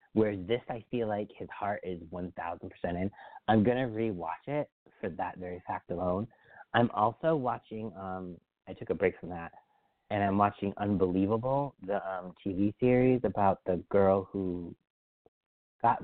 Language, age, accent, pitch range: English, 30-49, American, 95-125 Hz